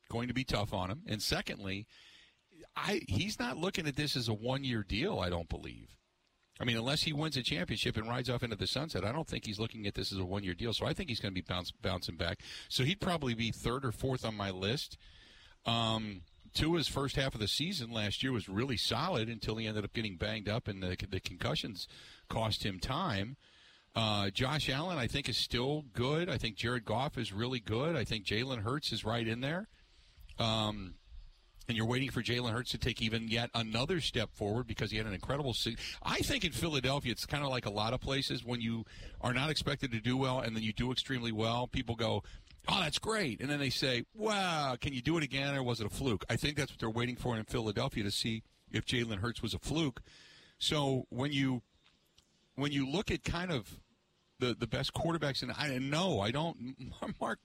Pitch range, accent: 105-135 Hz, American